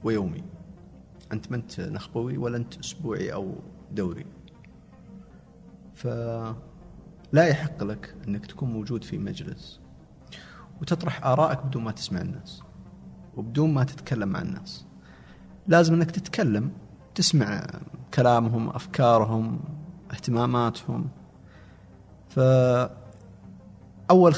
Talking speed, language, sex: 90 wpm, Arabic, male